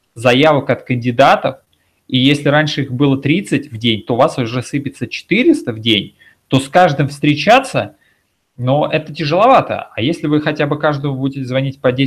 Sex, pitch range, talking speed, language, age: male, 125-155 Hz, 175 wpm, Russian, 30-49